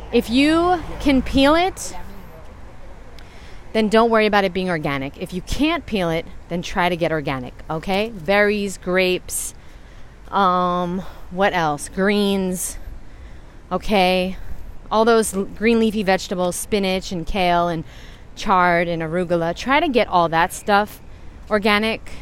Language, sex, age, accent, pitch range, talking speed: English, female, 30-49, American, 175-240 Hz, 135 wpm